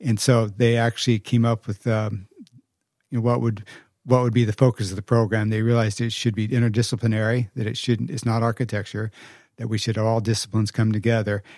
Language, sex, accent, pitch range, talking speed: Dutch, male, American, 110-125 Hz, 205 wpm